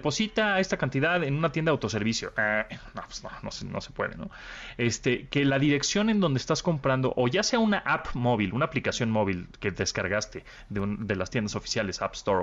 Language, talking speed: Spanish, 190 wpm